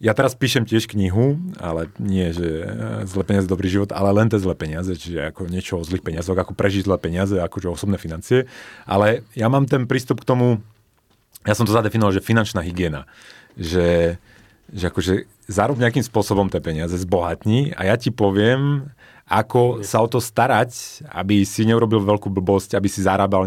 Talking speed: 180 wpm